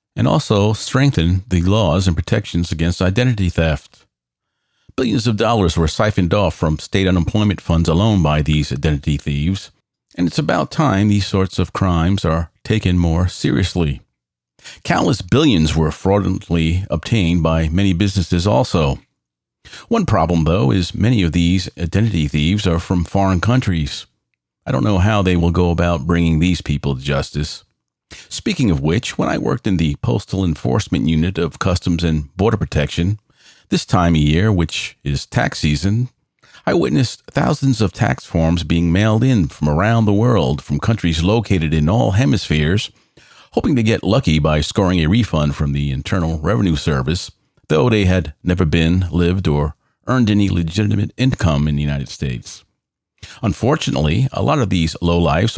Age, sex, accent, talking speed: 50-69, male, American, 160 wpm